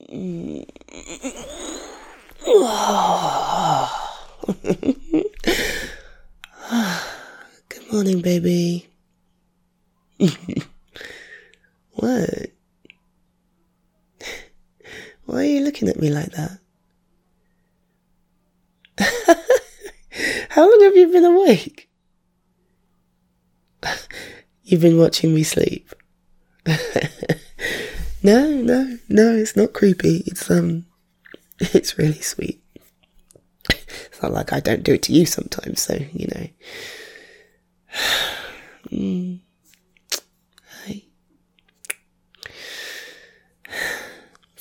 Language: English